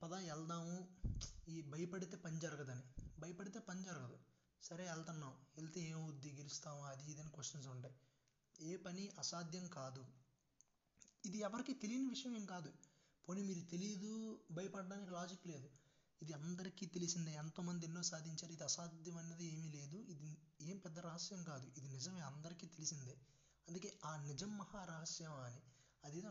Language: Telugu